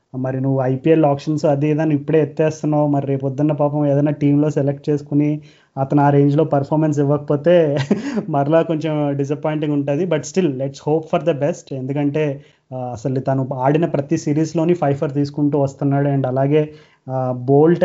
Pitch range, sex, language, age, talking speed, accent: 140-155 Hz, male, Telugu, 20-39, 150 wpm, native